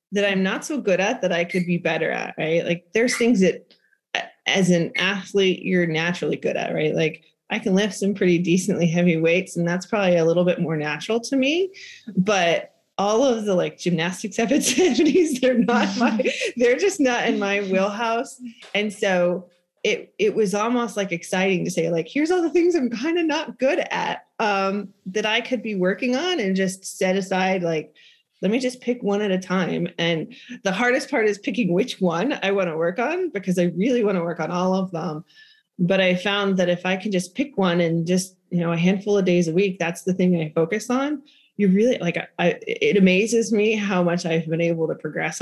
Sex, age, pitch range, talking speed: female, 30-49, 175-230 Hz, 220 wpm